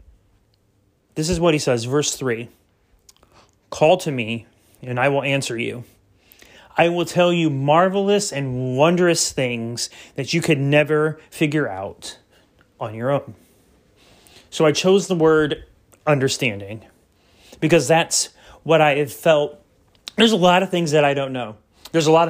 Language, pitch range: English, 120-170 Hz